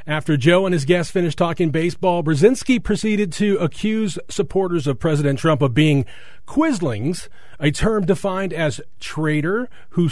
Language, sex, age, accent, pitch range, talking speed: English, male, 40-59, American, 145-195 Hz, 150 wpm